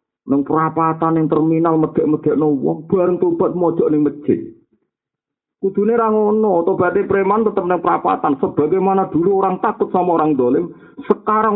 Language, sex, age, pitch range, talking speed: Malay, male, 50-69, 145-215 Hz, 125 wpm